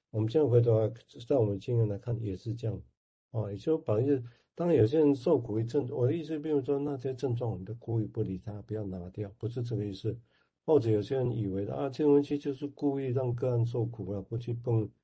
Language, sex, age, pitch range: Chinese, male, 60-79, 105-130 Hz